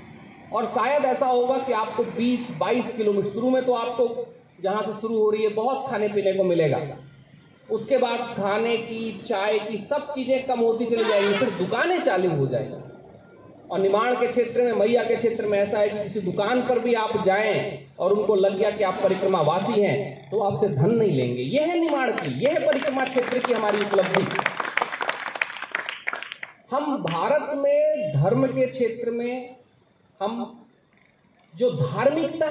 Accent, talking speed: native, 170 wpm